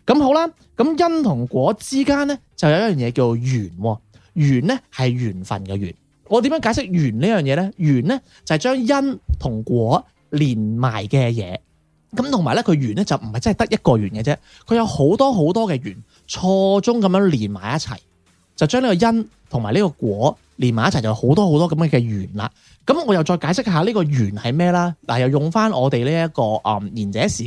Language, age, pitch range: Chinese, 20-39, 115-190 Hz